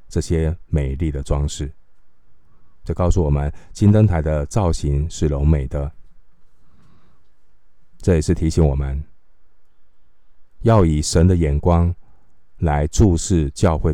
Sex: male